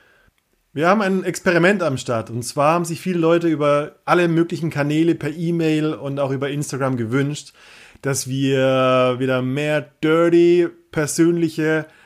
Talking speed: 145 wpm